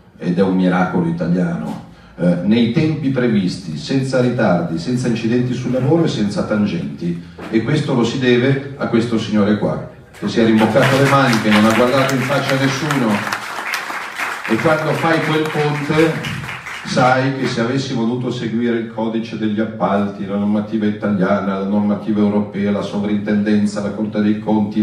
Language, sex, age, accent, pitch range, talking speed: Italian, male, 40-59, native, 105-145 Hz, 160 wpm